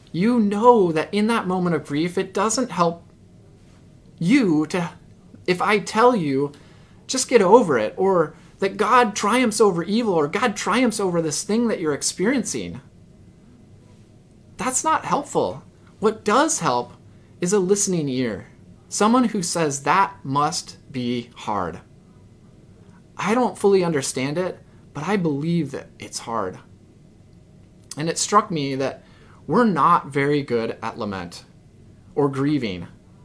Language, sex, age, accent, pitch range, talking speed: English, male, 20-39, American, 125-195 Hz, 140 wpm